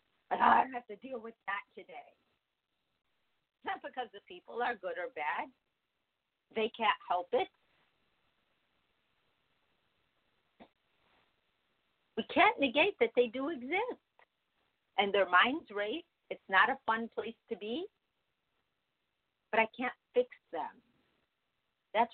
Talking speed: 125 wpm